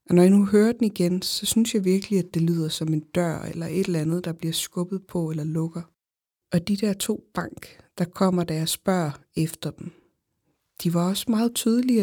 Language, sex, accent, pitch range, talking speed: Danish, female, native, 170-200 Hz, 220 wpm